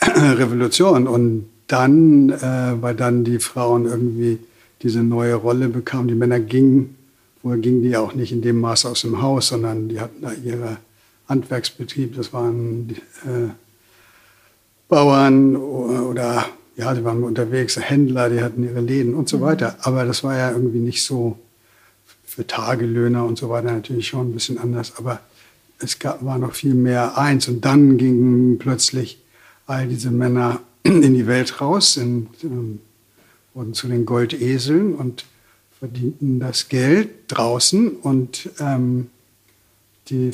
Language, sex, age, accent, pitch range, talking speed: German, male, 60-79, German, 115-130 Hz, 150 wpm